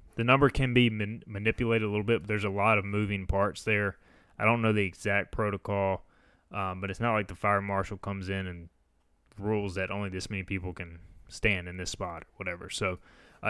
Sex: male